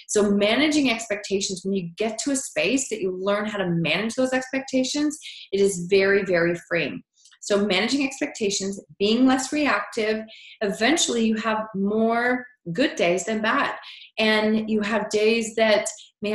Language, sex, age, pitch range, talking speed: English, female, 30-49, 170-220 Hz, 155 wpm